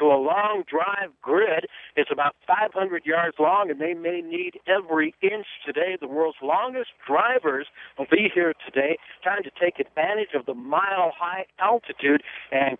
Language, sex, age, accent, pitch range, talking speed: English, male, 60-79, American, 145-235 Hz, 160 wpm